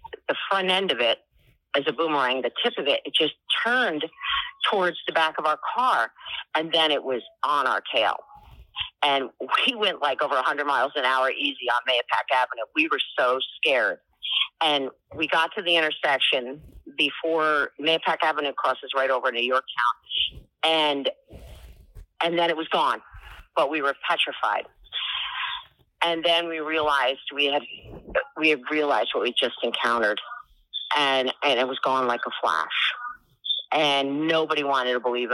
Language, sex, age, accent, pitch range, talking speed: English, female, 40-59, American, 130-165 Hz, 165 wpm